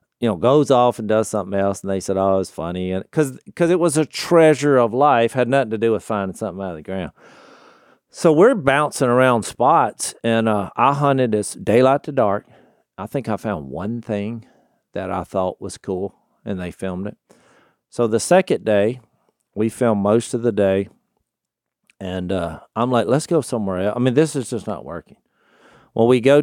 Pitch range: 100-135 Hz